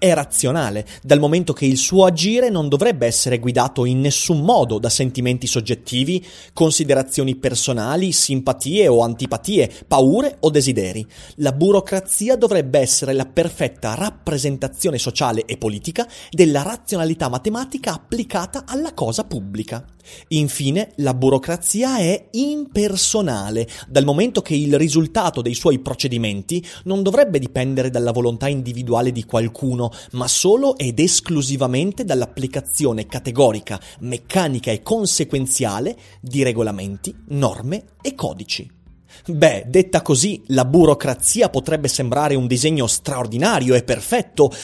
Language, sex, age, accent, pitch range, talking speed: Italian, male, 30-49, native, 125-190 Hz, 120 wpm